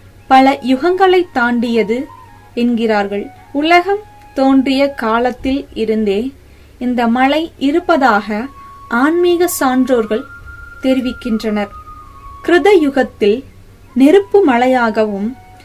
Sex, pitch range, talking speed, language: female, 225-300 Hz, 65 wpm, Tamil